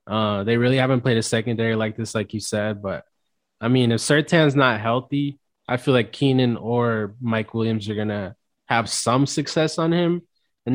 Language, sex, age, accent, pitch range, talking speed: English, male, 20-39, American, 110-130 Hz, 190 wpm